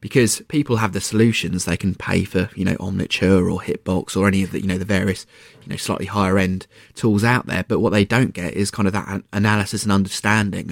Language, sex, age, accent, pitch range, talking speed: English, male, 20-39, British, 95-110 Hz, 235 wpm